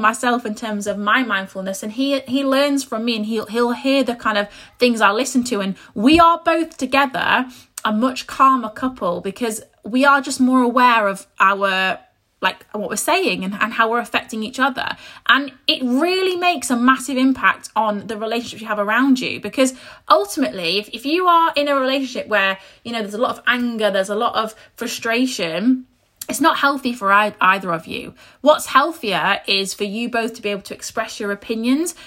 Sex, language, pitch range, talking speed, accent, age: female, English, 210-275 Hz, 200 wpm, British, 20-39